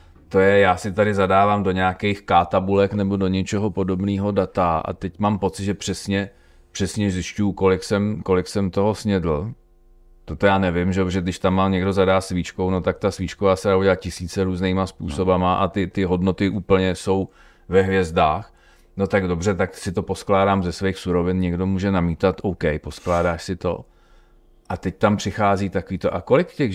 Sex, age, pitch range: male, 40-59, 85-100 Hz